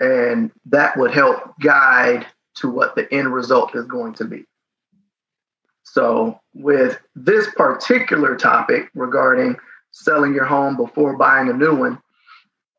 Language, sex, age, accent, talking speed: English, male, 30-49, American, 130 wpm